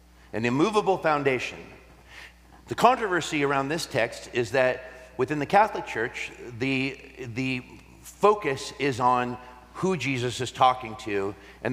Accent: American